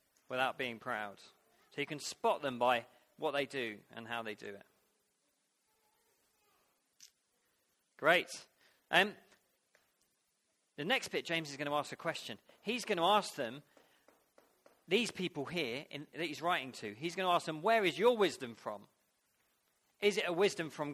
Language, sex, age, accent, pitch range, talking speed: English, male, 40-59, British, 145-205 Hz, 160 wpm